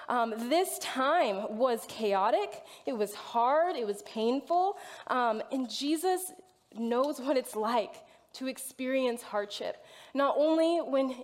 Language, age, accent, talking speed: English, 20-39, American, 130 wpm